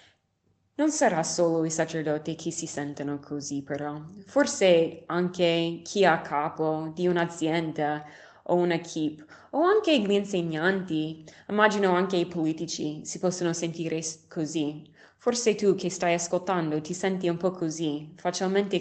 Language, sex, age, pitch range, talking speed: Italian, female, 20-39, 155-185 Hz, 135 wpm